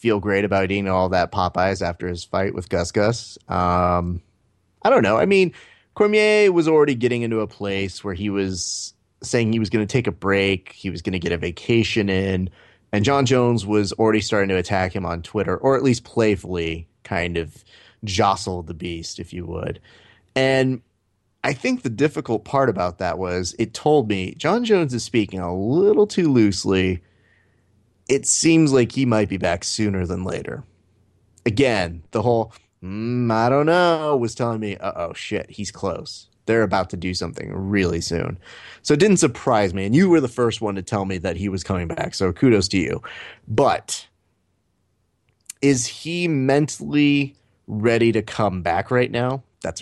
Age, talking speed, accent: 30-49, 185 wpm, American